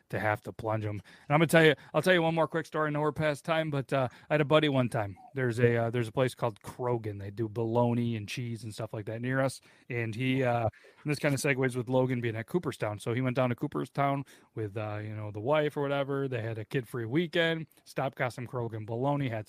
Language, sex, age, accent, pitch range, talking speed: English, male, 30-49, American, 120-150 Hz, 265 wpm